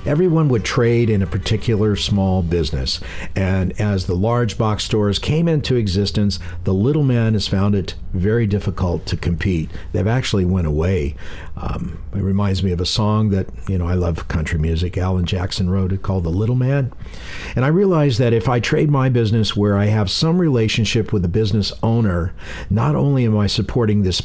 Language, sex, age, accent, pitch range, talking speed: English, male, 60-79, American, 95-120 Hz, 190 wpm